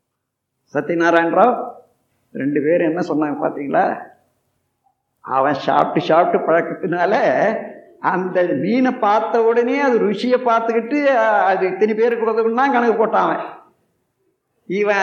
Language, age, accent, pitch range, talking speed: Tamil, 50-69, native, 200-275 Hz, 95 wpm